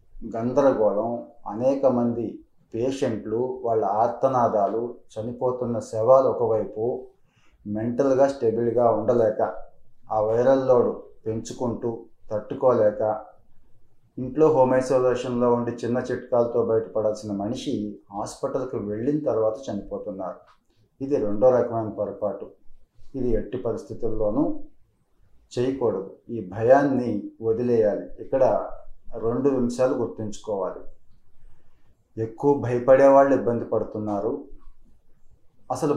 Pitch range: 115-135 Hz